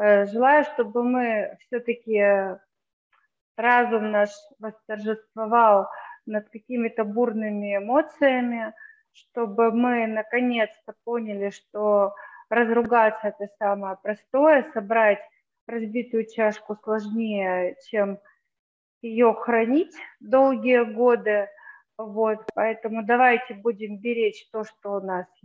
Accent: native